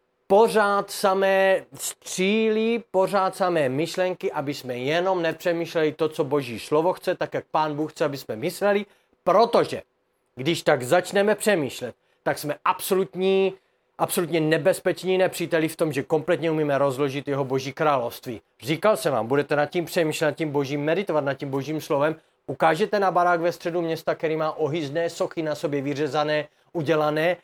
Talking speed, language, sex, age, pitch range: 155 wpm, Czech, male, 30-49, 145-175 Hz